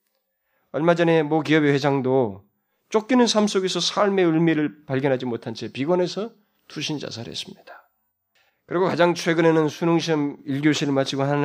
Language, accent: Korean, native